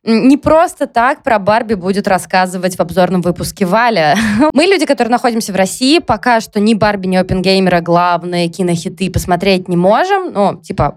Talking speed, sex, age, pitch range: 165 wpm, female, 20-39, 190-260 Hz